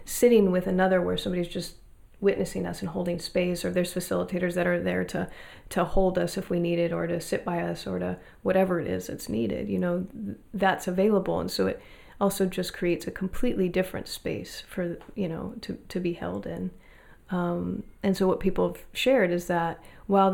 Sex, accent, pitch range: female, American, 165-190 Hz